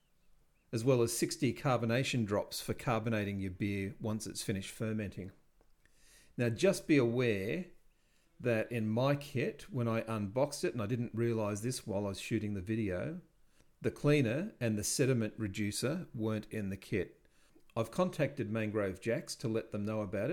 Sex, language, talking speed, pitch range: male, English, 165 wpm, 105-130 Hz